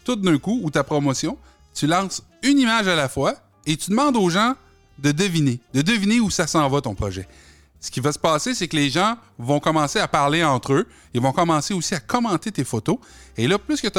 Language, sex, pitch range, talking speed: French, male, 125-180 Hz, 240 wpm